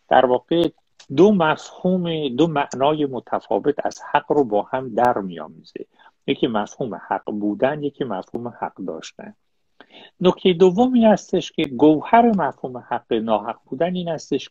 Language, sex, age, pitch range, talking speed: Persian, male, 50-69, 120-180 Hz, 130 wpm